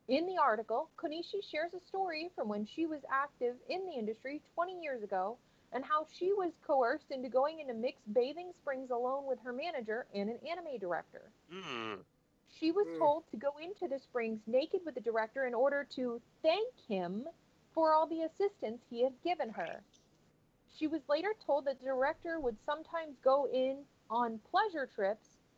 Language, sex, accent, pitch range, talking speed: English, female, American, 245-330 Hz, 180 wpm